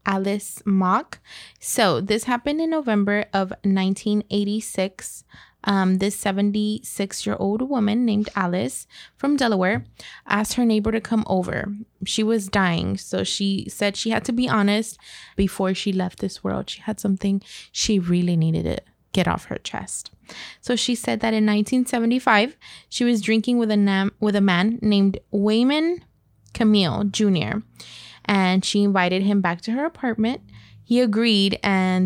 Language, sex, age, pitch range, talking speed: English, female, 20-39, 190-220 Hz, 150 wpm